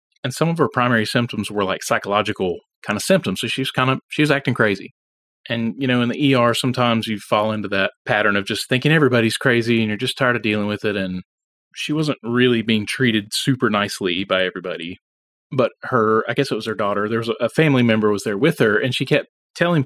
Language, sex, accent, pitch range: English, male, American, 105-130 Hz